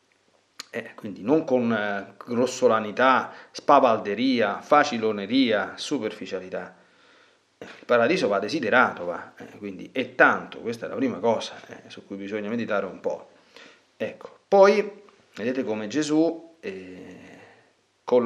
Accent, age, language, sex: native, 40-59, Italian, male